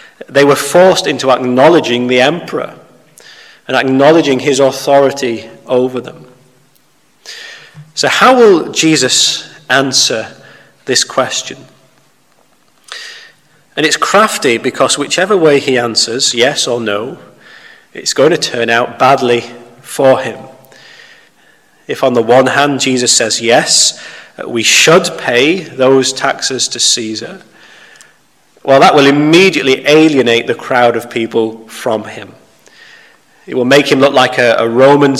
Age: 30-49